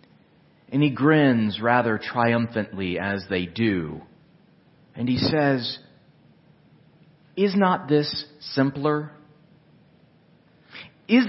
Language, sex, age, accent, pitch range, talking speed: English, male, 40-59, American, 125-190 Hz, 85 wpm